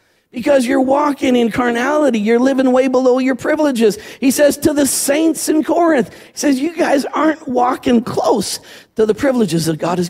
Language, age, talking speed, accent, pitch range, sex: English, 50-69, 185 wpm, American, 190-255 Hz, male